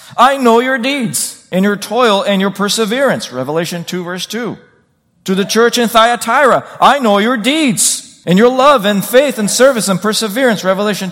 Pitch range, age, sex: 195-255 Hz, 40-59, male